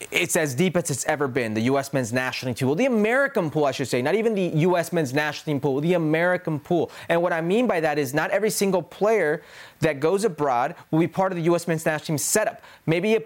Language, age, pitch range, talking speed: English, 30-49, 145-195 Hz, 255 wpm